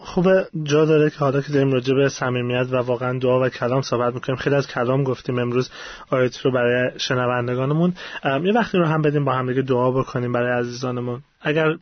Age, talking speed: 30-49, 195 wpm